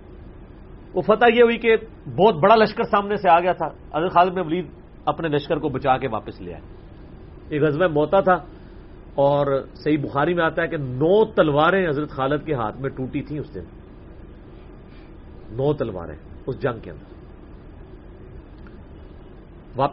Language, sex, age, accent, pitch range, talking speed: English, male, 40-59, Indian, 135-185 Hz, 145 wpm